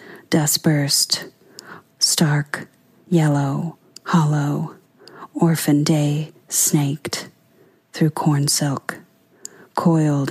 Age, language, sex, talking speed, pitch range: 30-49, English, female, 70 wpm, 150-170 Hz